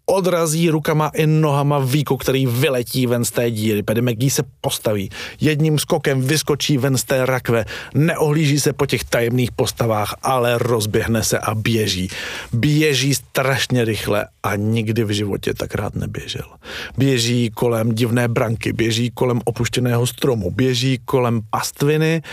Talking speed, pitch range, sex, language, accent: 140 wpm, 115-145 Hz, male, Czech, native